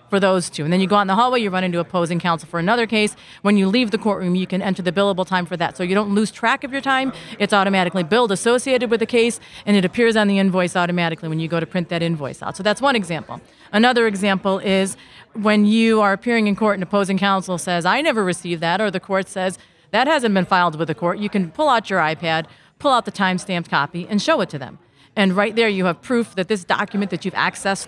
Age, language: 40-59, English